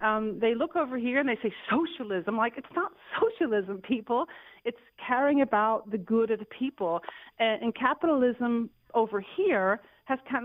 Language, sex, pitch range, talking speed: English, female, 215-265 Hz, 165 wpm